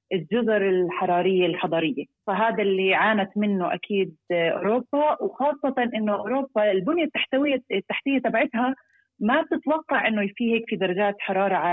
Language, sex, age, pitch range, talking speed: Arabic, female, 30-49, 180-225 Hz, 125 wpm